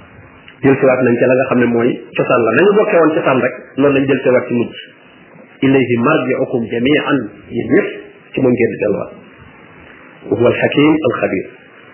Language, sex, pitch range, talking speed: French, male, 145-185 Hz, 70 wpm